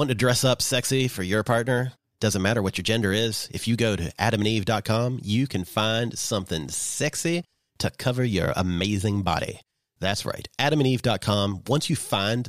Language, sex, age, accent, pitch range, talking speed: English, male, 30-49, American, 100-150 Hz, 170 wpm